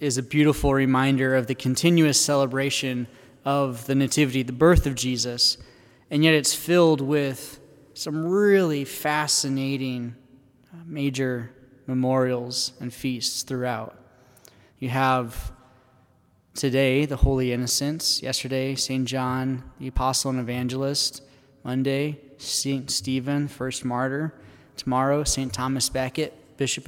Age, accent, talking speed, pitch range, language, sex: 20-39, American, 115 wpm, 130-150 Hz, English, male